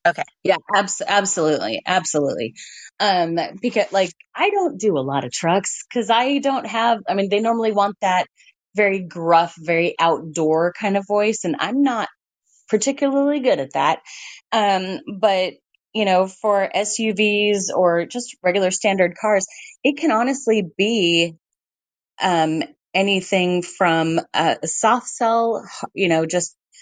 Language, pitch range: English, 170-220 Hz